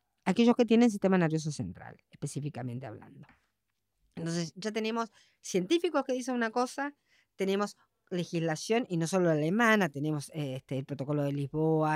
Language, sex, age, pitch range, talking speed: Spanish, female, 50-69, 150-245 Hz, 150 wpm